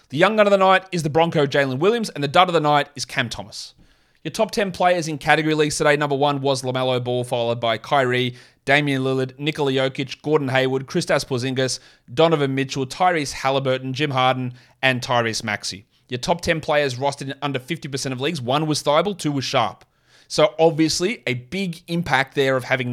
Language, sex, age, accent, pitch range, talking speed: English, male, 30-49, Australian, 130-170 Hz, 200 wpm